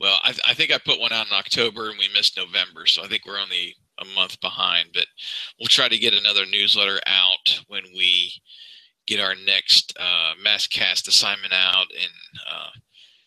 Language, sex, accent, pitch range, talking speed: English, male, American, 100-120 Hz, 190 wpm